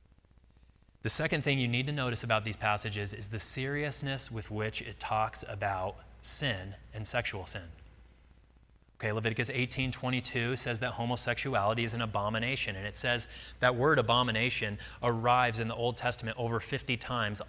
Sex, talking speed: male, 155 wpm